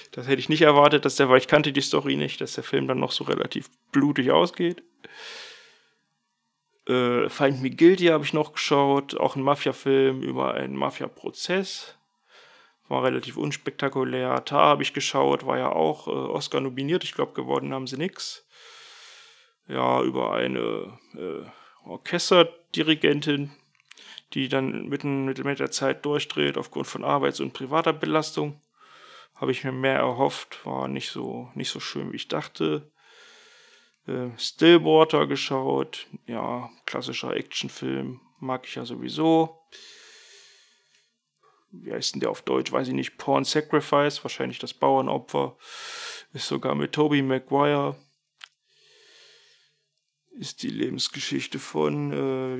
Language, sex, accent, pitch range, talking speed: German, male, German, 130-170 Hz, 140 wpm